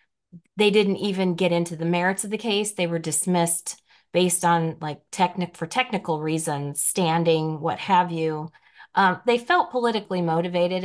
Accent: American